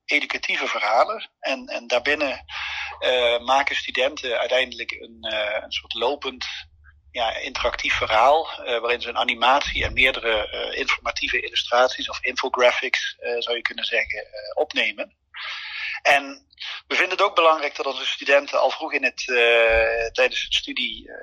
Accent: Dutch